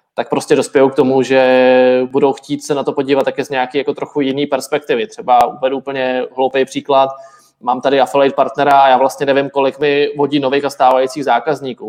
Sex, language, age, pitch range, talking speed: male, Czech, 20-39, 130-145 Hz, 190 wpm